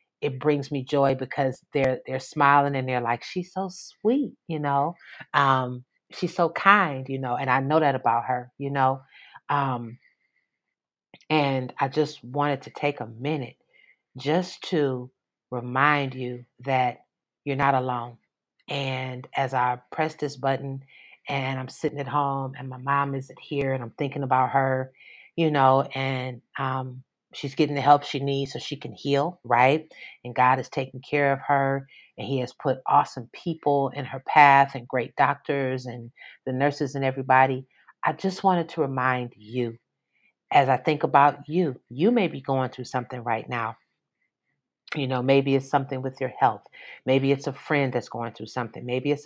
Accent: American